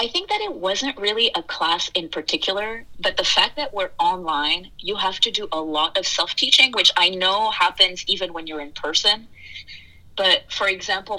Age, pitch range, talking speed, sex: 30-49, 155-210 Hz, 195 wpm, female